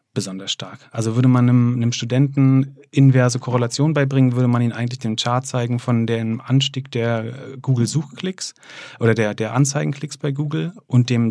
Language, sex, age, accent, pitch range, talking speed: German, male, 40-59, German, 115-130 Hz, 170 wpm